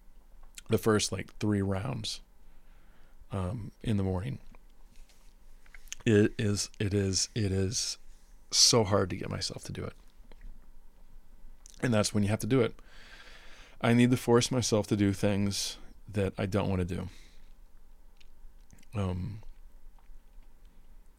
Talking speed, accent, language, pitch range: 130 wpm, American, English, 95-120 Hz